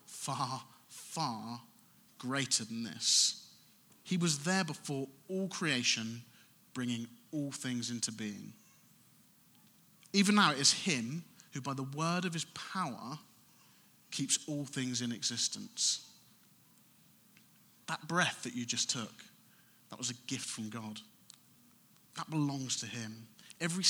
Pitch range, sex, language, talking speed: 115-150 Hz, male, English, 125 wpm